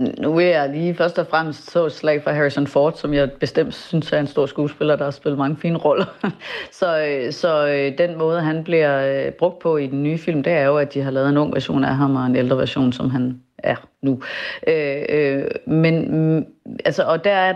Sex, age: female, 30-49